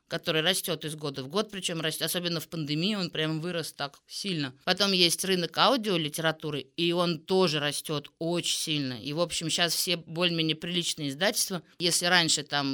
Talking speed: 170 wpm